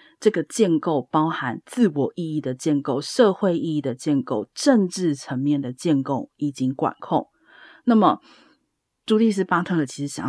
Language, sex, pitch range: Chinese, female, 140-195 Hz